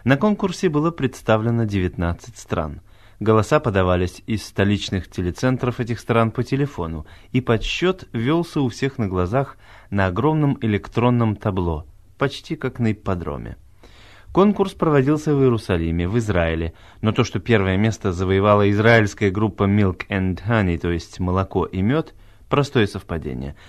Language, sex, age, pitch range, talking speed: Russian, male, 30-49, 95-120 Hz, 135 wpm